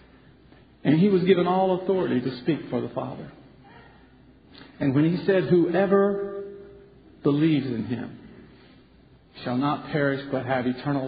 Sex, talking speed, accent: male, 135 wpm, American